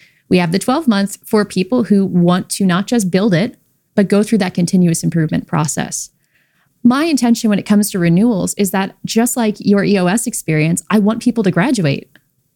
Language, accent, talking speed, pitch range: English, American, 190 wpm, 165-225 Hz